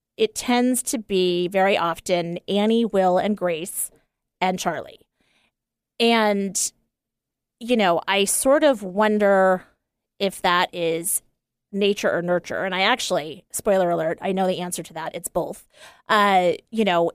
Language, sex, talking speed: English, female, 145 wpm